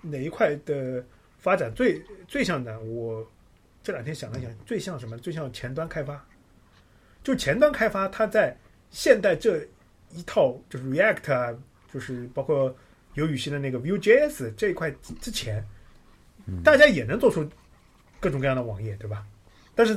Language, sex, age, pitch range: Chinese, male, 30-49, 120-185 Hz